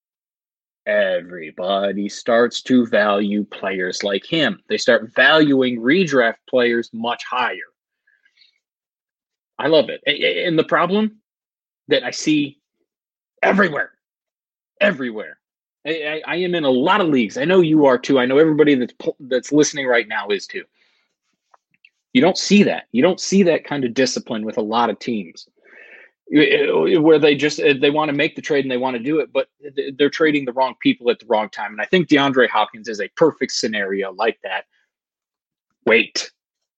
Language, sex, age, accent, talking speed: English, male, 30-49, American, 165 wpm